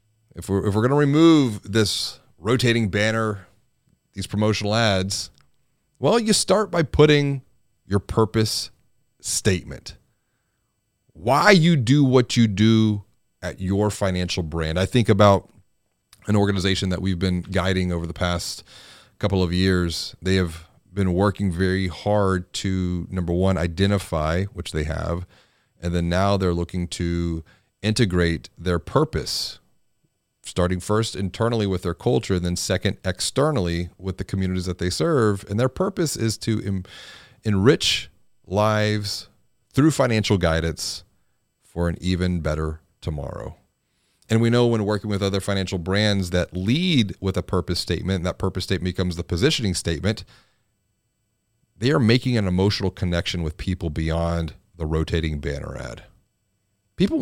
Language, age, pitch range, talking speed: English, 30-49, 90-110 Hz, 140 wpm